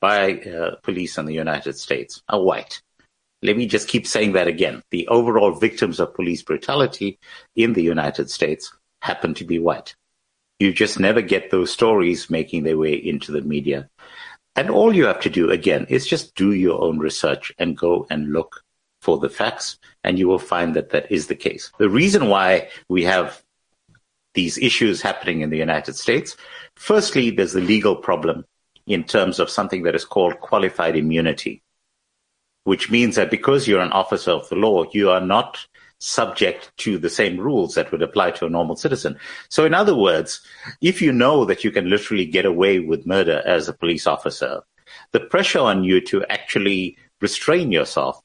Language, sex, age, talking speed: English, male, 60-79, 185 wpm